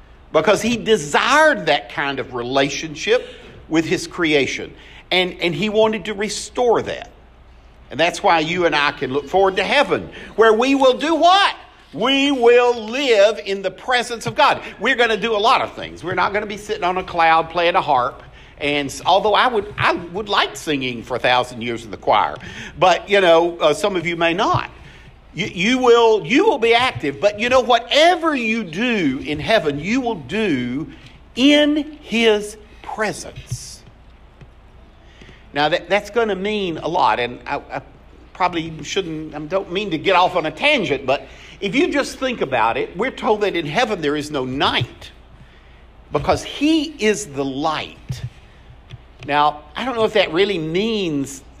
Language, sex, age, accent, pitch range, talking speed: English, male, 50-69, American, 150-235 Hz, 185 wpm